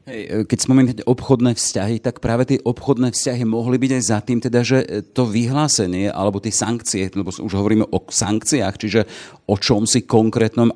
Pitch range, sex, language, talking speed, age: 95-120 Hz, male, Slovak, 180 wpm, 40-59